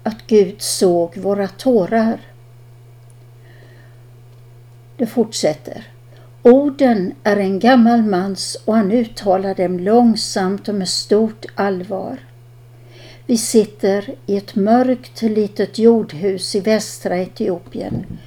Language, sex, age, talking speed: Swedish, female, 60-79, 100 wpm